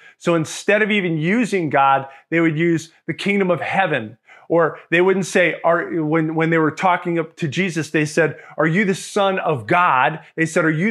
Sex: male